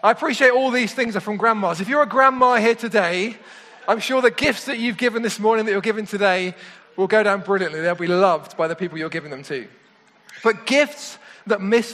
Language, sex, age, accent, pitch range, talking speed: English, male, 20-39, British, 195-240 Hz, 225 wpm